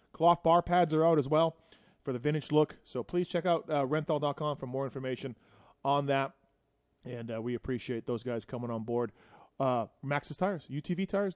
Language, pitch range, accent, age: English, 125-160 Hz, American, 30-49